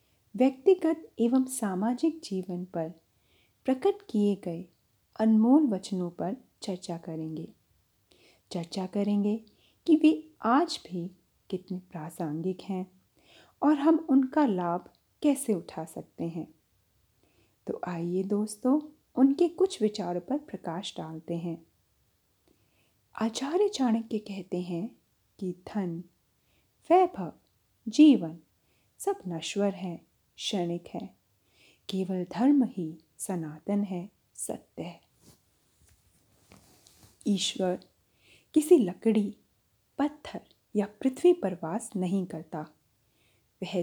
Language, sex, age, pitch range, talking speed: Hindi, female, 30-49, 175-255 Hz, 95 wpm